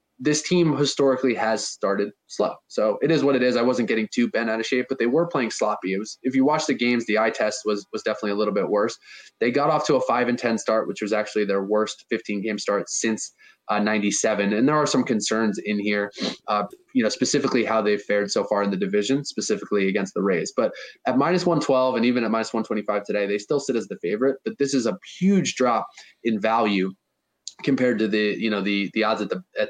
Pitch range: 105-130 Hz